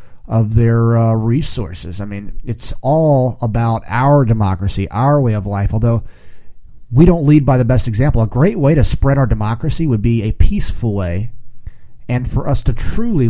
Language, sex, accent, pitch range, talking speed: English, male, American, 115-150 Hz, 180 wpm